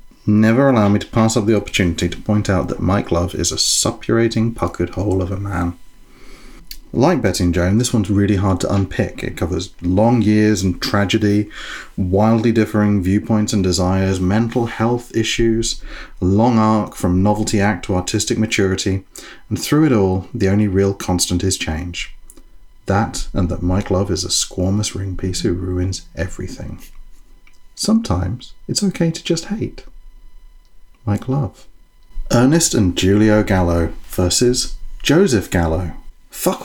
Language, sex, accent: English, male, British